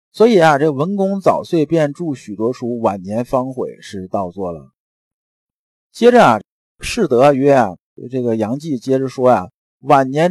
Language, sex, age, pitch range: Chinese, male, 50-69, 110-150 Hz